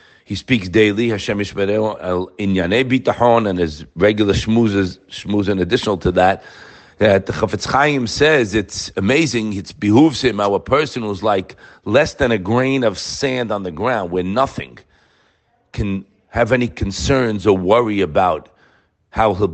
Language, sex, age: English, male, 50-69